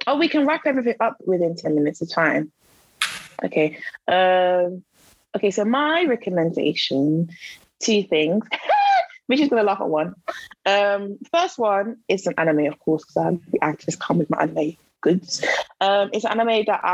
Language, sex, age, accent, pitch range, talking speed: English, female, 20-39, British, 160-195 Hz, 170 wpm